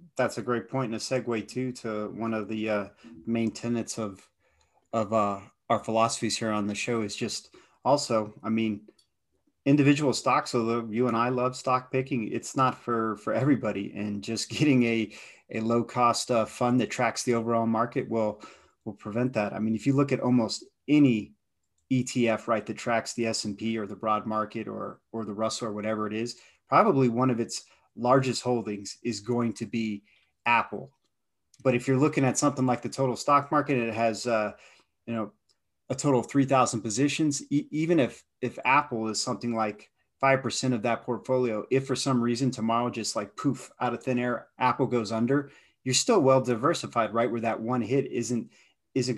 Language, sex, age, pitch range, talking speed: English, male, 30-49, 110-130 Hz, 195 wpm